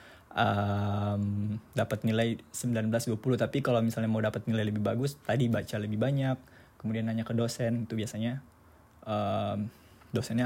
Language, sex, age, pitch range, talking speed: Indonesian, male, 20-39, 105-120 Hz, 155 wpm